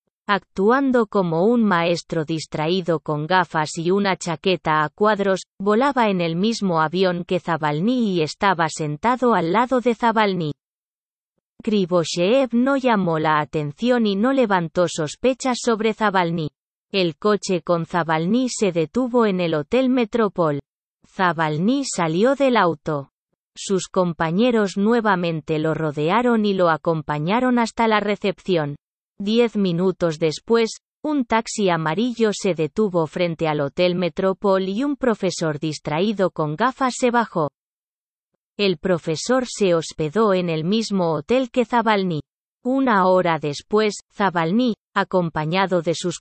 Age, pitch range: 20-39, 165-225 Hz